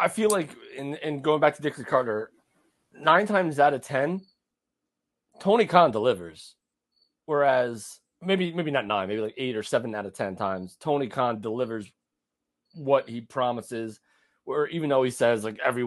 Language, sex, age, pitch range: English, male, 30-49, 120-150 Hz